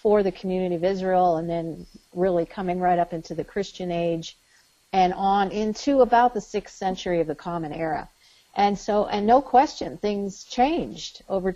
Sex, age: female, 50-69